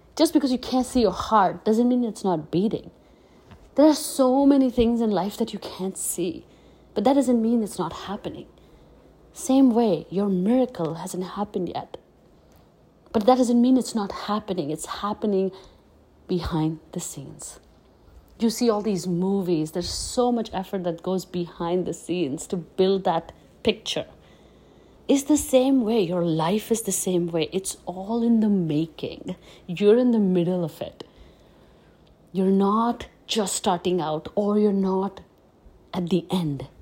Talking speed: 160 wpm